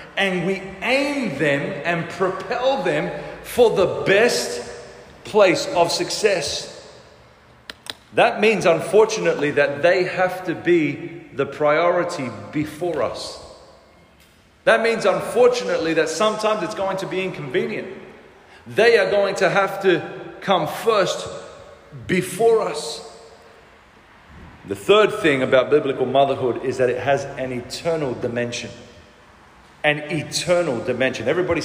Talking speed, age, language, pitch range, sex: 120 wpm, 40-59, English, 150-200 Hz, male